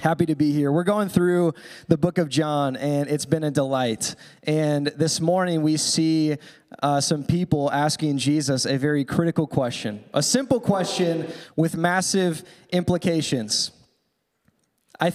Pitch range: 145-180 Hz